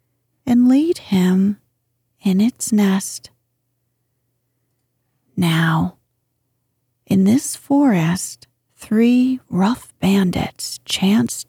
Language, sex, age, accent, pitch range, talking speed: English, female, 40-59, American, 125-210 Hz, 75 wpm